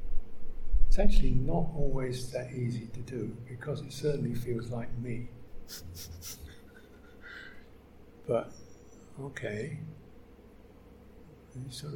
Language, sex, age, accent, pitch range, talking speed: English, male, 60-79, British, 120-155 Hz, 85 wpm